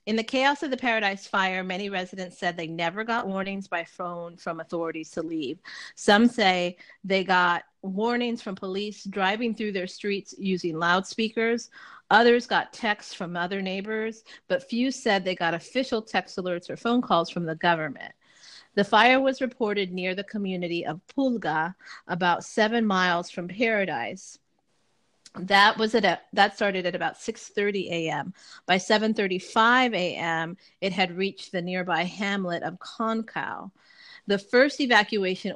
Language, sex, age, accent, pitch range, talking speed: English, female, 40-59, American, 180-220 Hz, 155 wpm